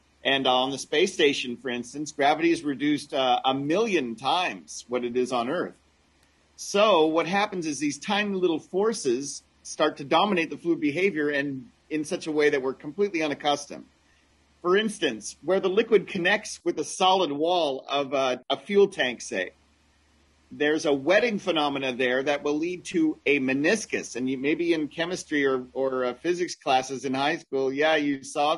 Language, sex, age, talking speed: English, male, 40-59, 180 wpm